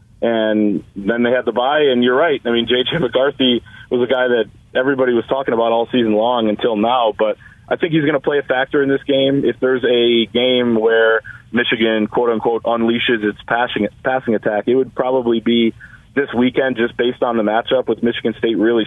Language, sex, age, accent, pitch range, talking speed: English, male, 30-49, American, 110-130 Hz, 205 wpm